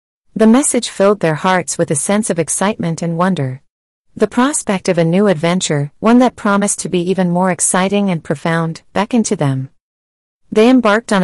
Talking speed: 180 wpm